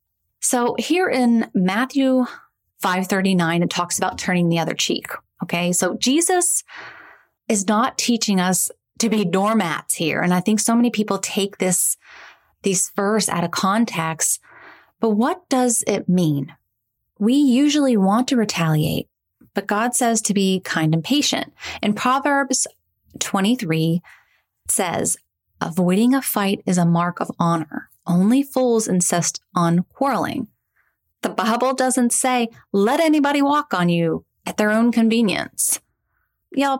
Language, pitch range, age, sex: English, 175-250 Hz, 30-49, female